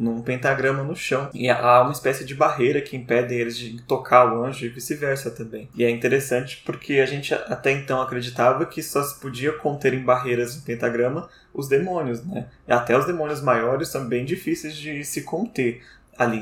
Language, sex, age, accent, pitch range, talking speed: Portuguese, male, 20-39, Brazilian, 120-150 Hz, 190 wpm